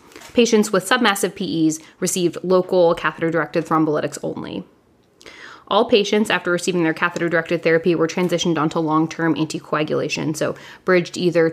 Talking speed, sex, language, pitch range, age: 125 wpm, female, English, 160-190 Hz, 20-39